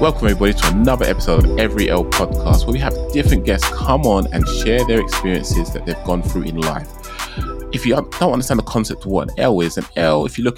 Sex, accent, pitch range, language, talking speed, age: male, British, 85-105 Hz, English, 240 wpm, 20-39